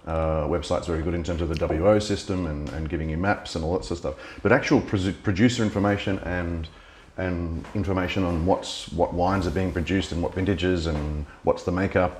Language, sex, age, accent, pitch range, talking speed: English, male, 30-49, Australian, 80-95 Hz, 205 wpm